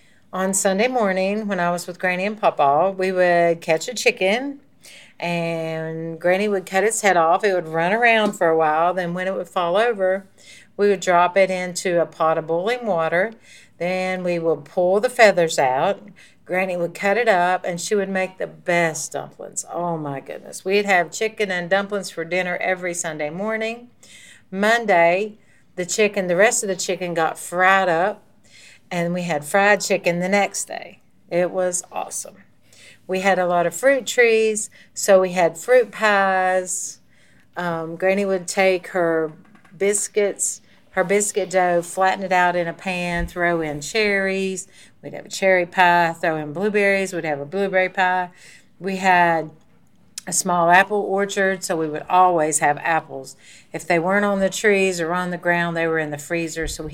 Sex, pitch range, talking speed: female, 170-195 Hz, 180 wpm